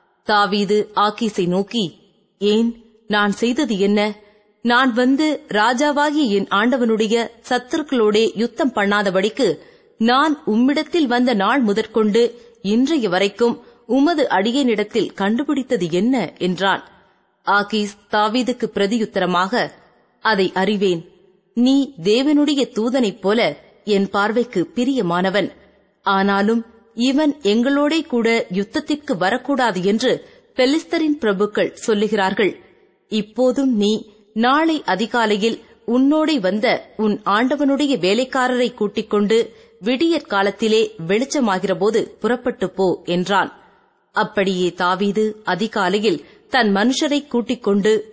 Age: 30-49